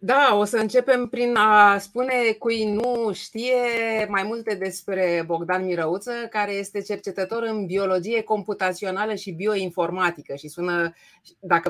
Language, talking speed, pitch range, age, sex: Romanian, 135 wpm, 175-215 Hz, 30-49, female